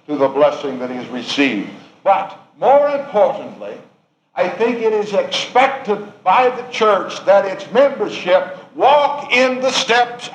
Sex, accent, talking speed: male, American, 145 wpm